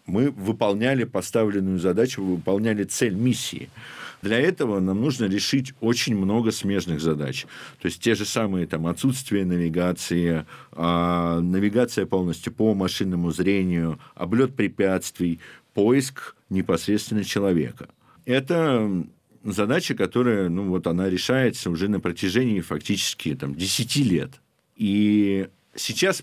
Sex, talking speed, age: male, 105 wpm, 50-69